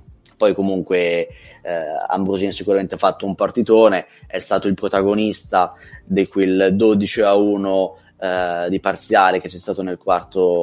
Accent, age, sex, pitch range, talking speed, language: native, 20-39, male, 90-105 Hz, 145 wpm, Italian